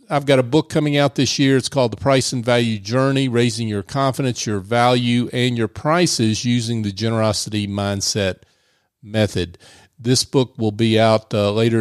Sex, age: male, 40-59